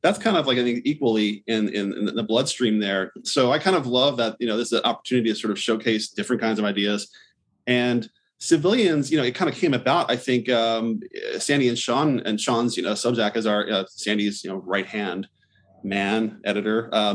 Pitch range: 110-130 Hz